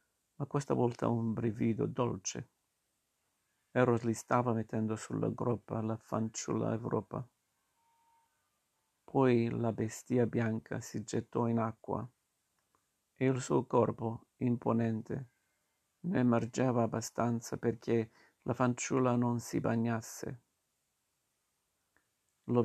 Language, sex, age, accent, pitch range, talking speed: Italian, male, 50-69, native, 115-125 Hz, 100 wpm